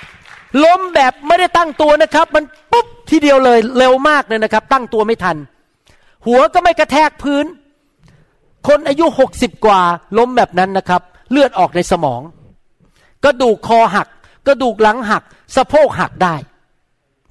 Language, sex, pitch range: Thai, male, 190-290 Hz